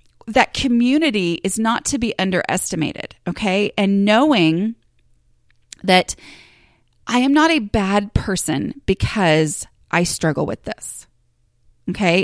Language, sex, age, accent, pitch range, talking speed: English, female, 30-49, American, 175-230 Hz, 115 wpm